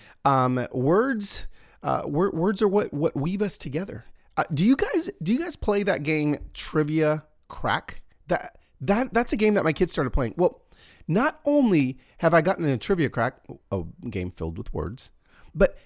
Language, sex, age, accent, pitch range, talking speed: English, male, 30-49, American, 135-195 Hz, 180 wpm